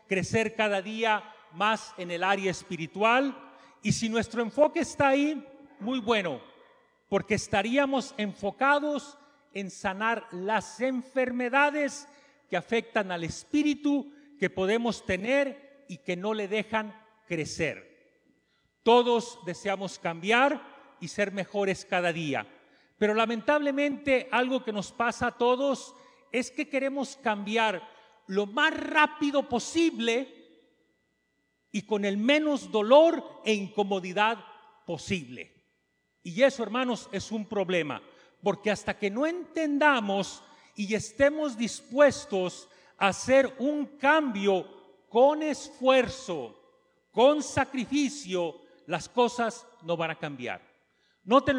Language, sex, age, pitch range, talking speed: English, male, 40-59, 195-280 Hz, 115 wpm